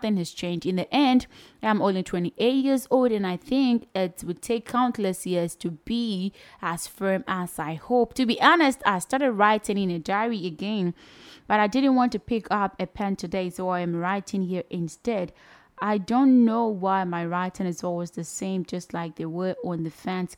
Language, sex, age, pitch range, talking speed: English, female, 20-39, 185-255 Hz, 200 wpm